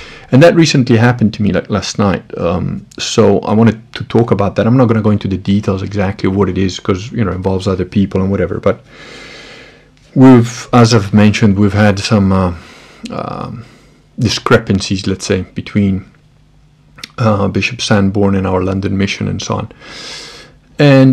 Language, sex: English, male